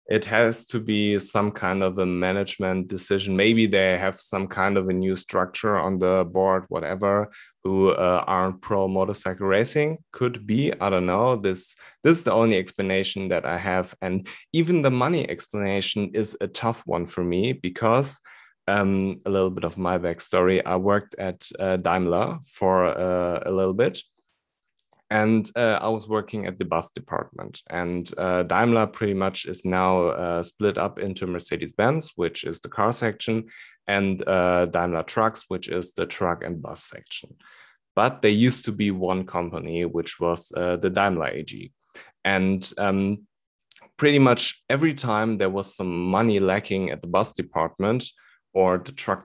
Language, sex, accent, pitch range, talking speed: English, male, German, 90-105 Hz, 170 wpm